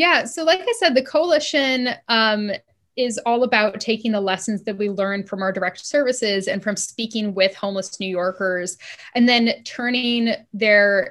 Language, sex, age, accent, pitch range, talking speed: English, female, 10-29, American, 190-225 Hz, 175 wpm